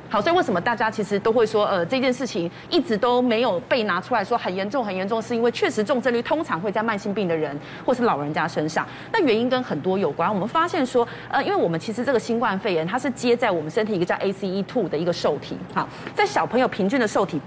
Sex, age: female, 30-49